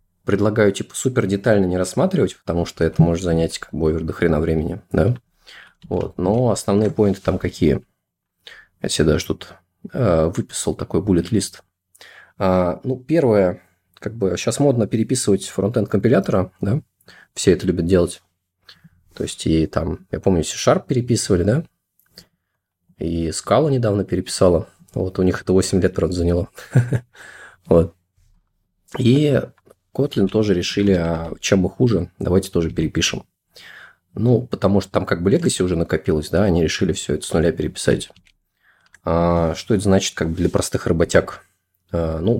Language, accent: Russian, native